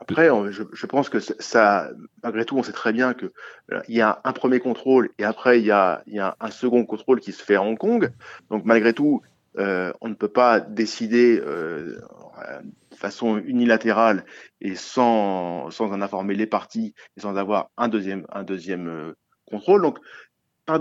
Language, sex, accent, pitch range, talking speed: French, male, French, 115-175 Hz, 185 wpm